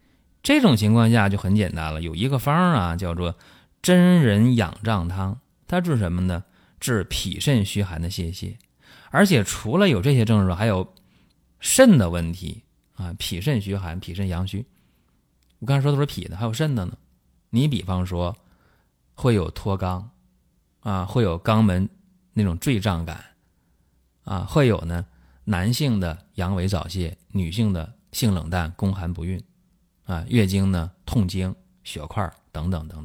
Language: Chinese